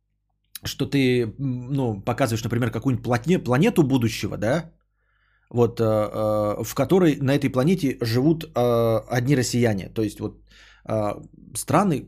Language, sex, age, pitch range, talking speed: Bulgarian, male, 20-39, 115-150 Hz, 110 wpm